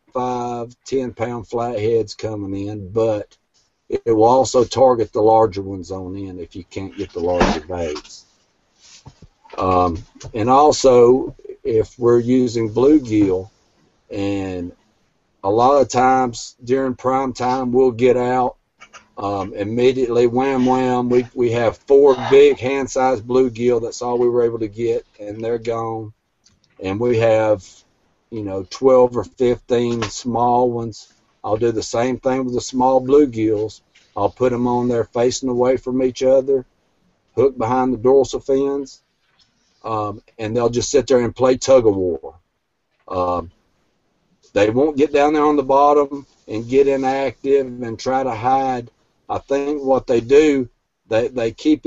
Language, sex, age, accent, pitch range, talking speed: English, male, 50-69, American, 110-130 Hz, 150 wpm